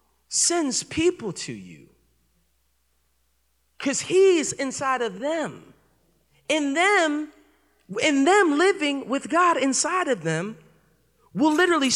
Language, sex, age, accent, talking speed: English, male, 40-59, American, 100 wpm